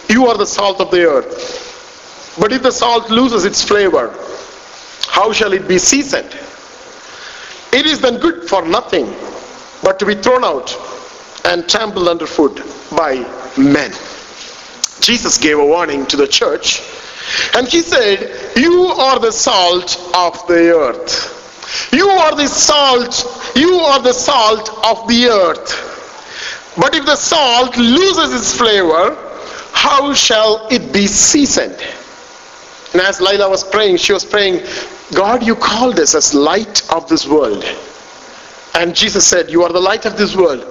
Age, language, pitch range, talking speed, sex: 50-69, English, 180-300 Hz, 150 wpm, male